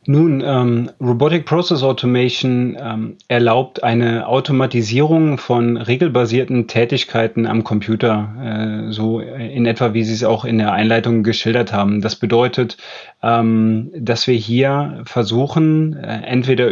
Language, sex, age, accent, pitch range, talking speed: German, male, 30-49, German, 110-125 Hz, 130 wpm